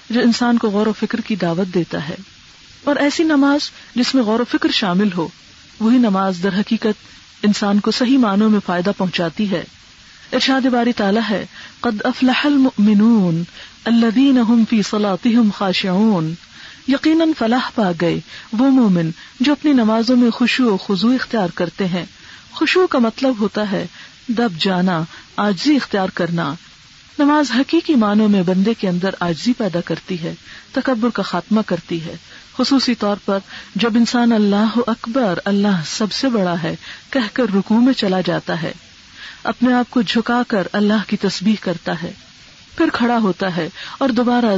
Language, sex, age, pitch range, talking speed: Urdu, female, 40-59, 190-245 Hz, 155 wpm